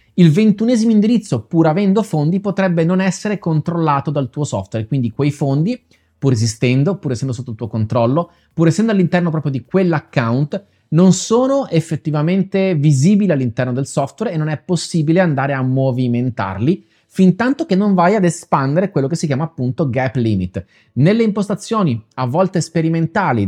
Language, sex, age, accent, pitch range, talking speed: Italian, male, 30-49, native, 130-185 Hz, 160 wpm